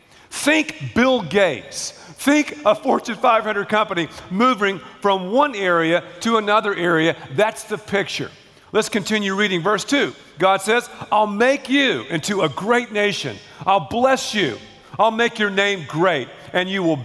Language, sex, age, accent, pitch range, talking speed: English, male, 40-59, American, 180-235 Hz, 150 wpm